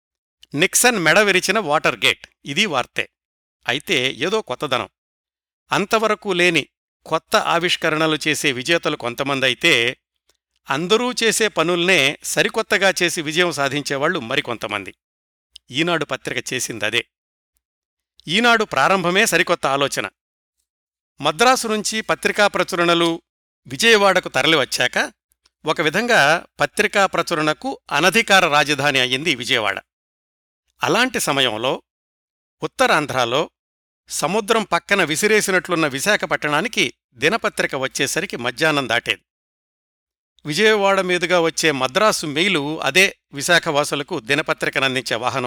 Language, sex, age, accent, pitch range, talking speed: Telugu, male, 60-79, native, 140-185 Hz, 85 wpm